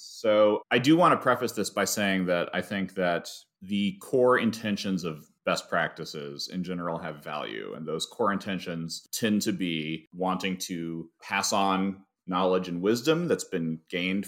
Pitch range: 95-125 Hz